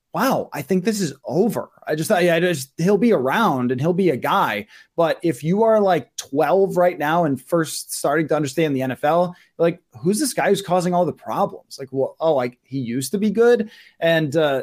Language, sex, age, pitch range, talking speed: English, male, 20-39, 140-185 Hz, 215 wpm